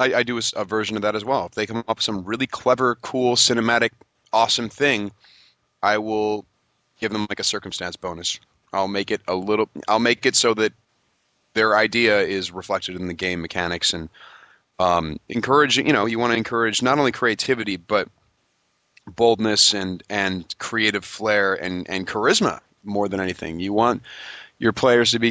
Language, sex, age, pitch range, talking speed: English, male, 30-49, 105-130 Hz, 185 wpm